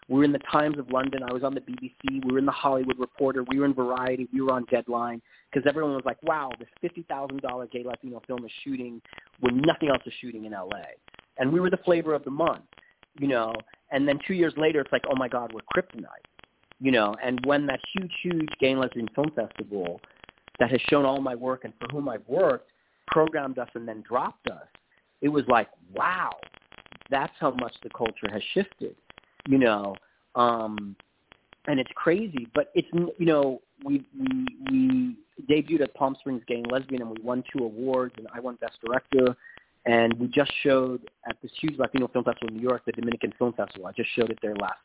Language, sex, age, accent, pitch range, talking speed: English, male, 40-59, American, 125-150 Hz, 215 wpm